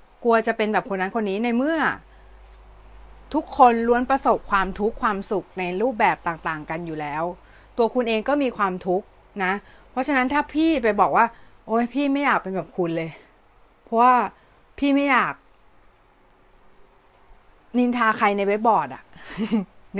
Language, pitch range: Thai, 190-240 Hz